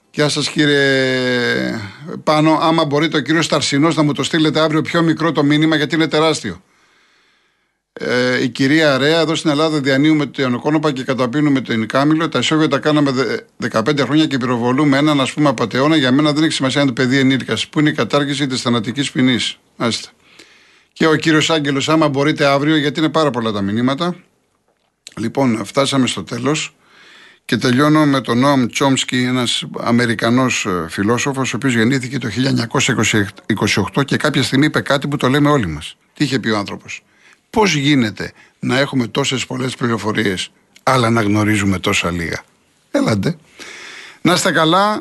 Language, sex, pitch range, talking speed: Greek, male, 125-155 Hz, 165 wpm